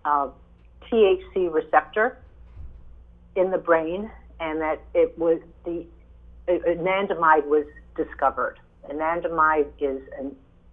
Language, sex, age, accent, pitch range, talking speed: English, female, 60-79, American, 130-180 Hz, 95 wpm